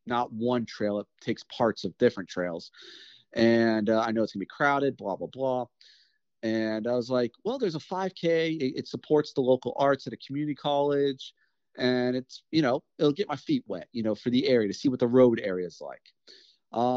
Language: English